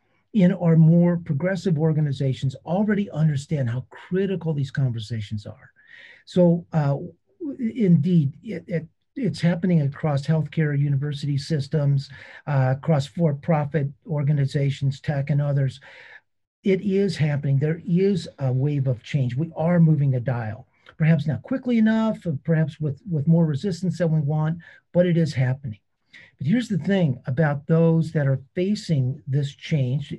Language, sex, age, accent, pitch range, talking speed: English, male, 50-69, American, 135-175 Hz, 145 wpm